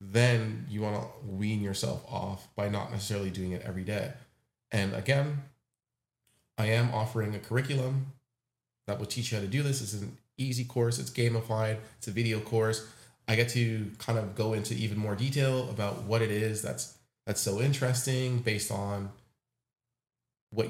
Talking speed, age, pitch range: 175 wpm, 30-49, 110-130 Hz